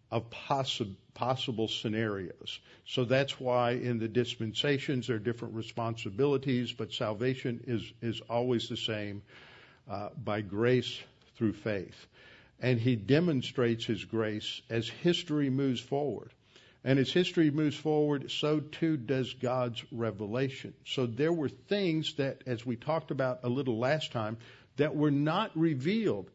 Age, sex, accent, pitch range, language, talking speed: 50-69, male, American, 115-135 Hz, English, 140 wpm